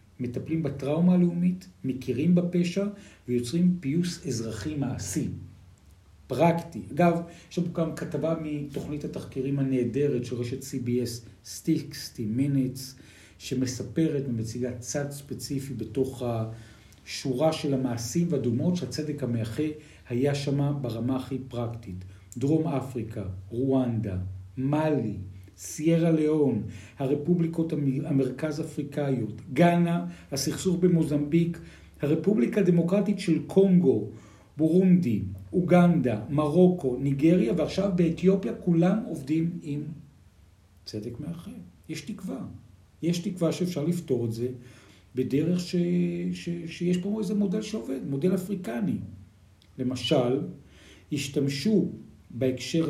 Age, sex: 50-69, male